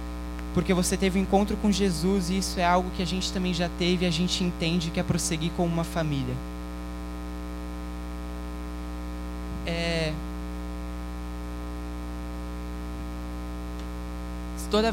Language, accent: Portuguese, Brazilian